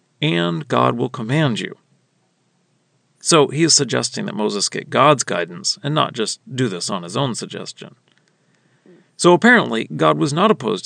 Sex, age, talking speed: male, 40-59, 160 wpm